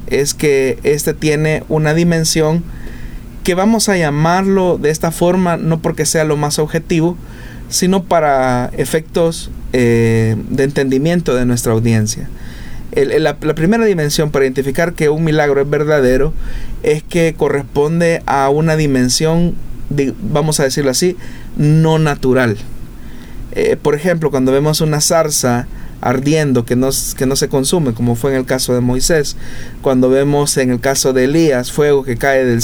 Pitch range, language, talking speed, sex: 130-160 Hz, Spanish, 155 wpm, male